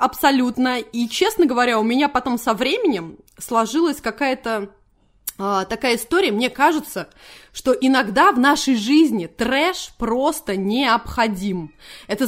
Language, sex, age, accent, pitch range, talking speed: Russian, female, 20-39, native, 230-305 Hz, 120 wpm